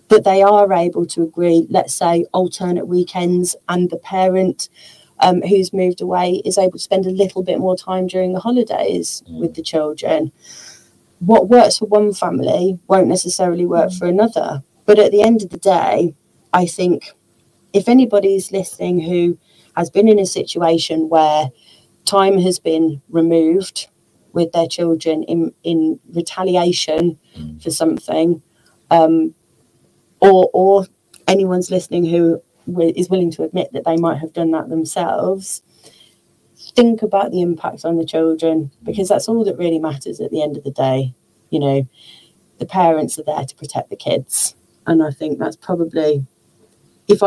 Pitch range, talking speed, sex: 160-190 Hz, 160 wpm, female